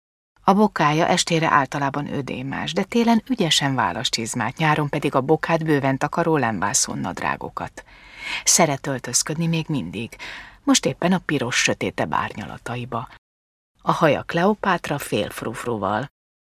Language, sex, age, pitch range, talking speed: Hungarian, female, 30-49, 130-175 Hz, 115 wpm